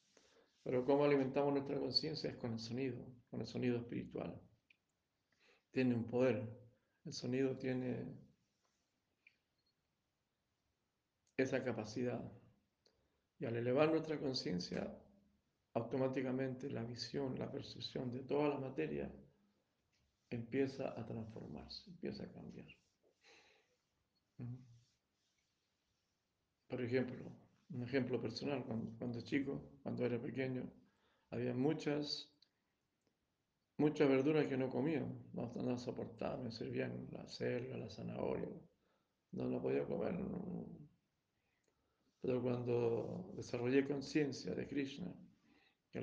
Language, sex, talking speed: Spanish, male, 105 wpm